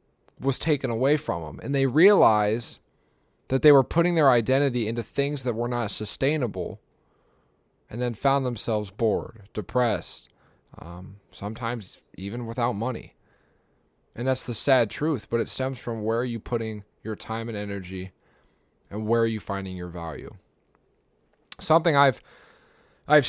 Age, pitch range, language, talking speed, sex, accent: 20-39, 110-140 Hz, English, 150 wpm, male, American